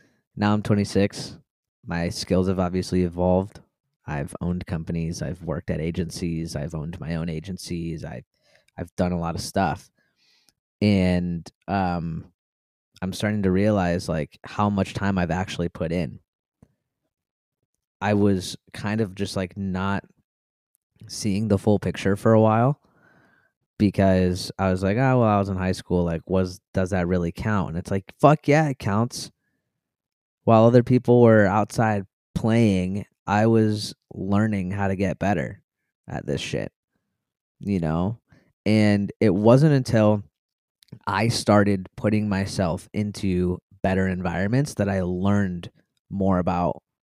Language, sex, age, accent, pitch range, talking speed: English, male, 20-39, American, 90-105 Hz, 145 wpm